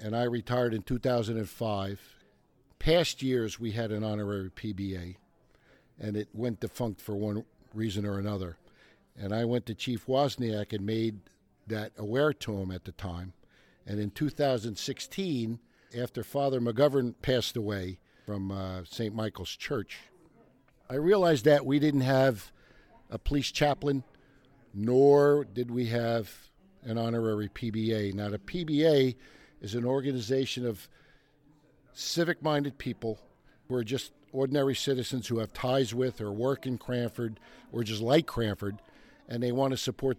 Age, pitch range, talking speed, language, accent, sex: 50-69, 105-135 Hz, 145 wpm, English, American, male